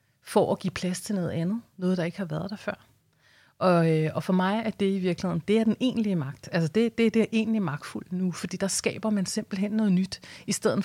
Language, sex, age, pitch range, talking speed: Danish, female, 30-49, 170-205 Hz, 250 wpm